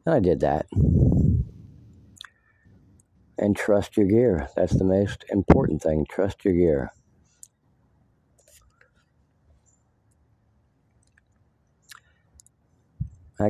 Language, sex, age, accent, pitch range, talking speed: English, male, 50-69, American, 90-115 Hz, 75 wpm